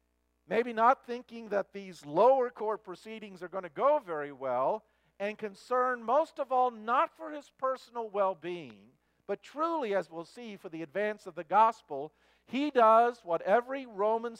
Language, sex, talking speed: English, male, 165 wpm